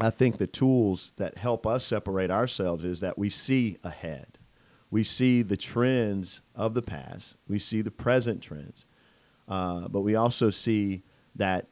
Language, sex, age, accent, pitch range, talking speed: English, male, 40-59, American, 90-115 Hz, 165 wpm